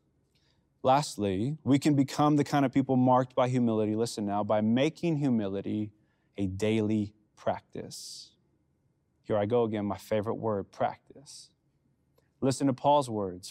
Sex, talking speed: male, 140 wpm